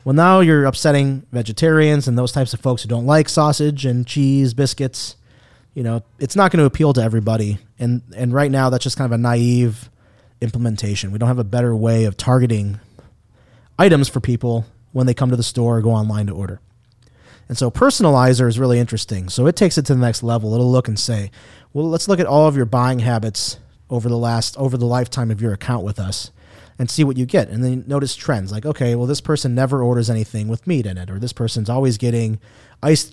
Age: 30-49